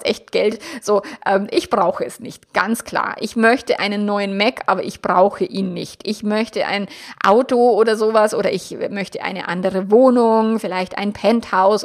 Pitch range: 190-225 Hz